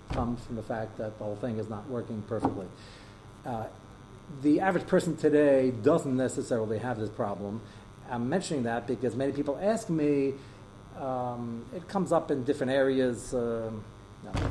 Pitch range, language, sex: 110-145 Hz, English, male